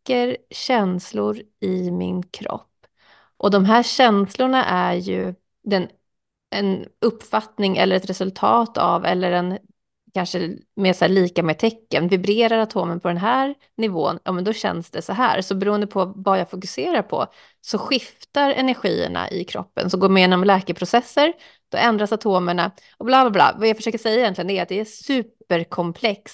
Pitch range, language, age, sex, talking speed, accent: 185-230 Hz, English, 30-49, female, 165 wpm, Swedish